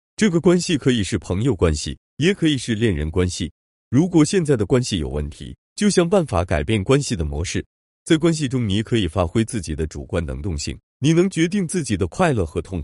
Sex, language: male, Chinese